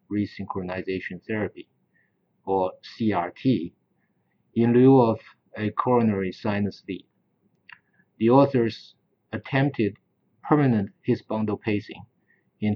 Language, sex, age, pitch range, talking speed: English, male, 50-69, 100-120 Hz, 90 wpm